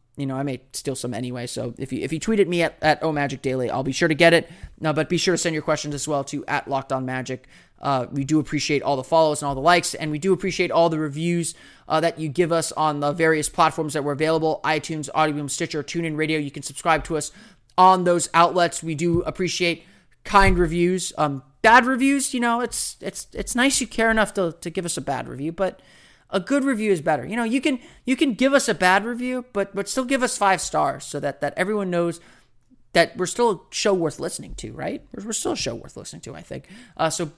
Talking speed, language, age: 250 wpm, English, 20-39